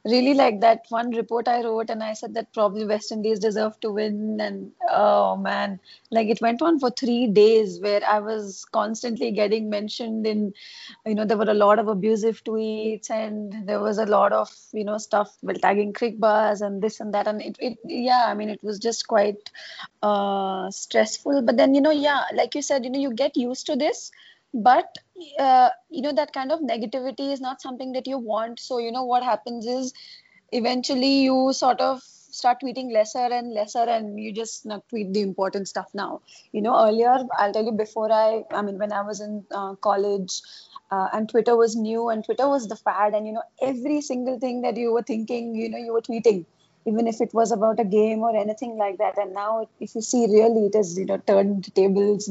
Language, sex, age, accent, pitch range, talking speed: Telugu, female, 20-39, native, 210-245 Hz, 215 wpm